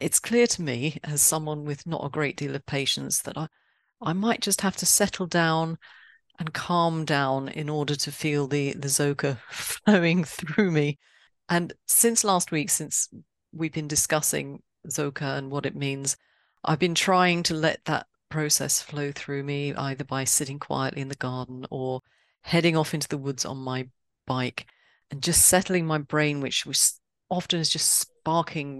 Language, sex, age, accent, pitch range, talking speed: English, female, 40-59, British, 140-170 Hz, 175 wpm